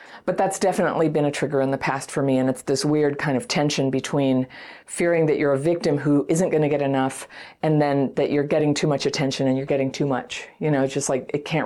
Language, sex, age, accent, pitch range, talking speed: English, female, 40-59, American, 140-165 Hz, 255 wpm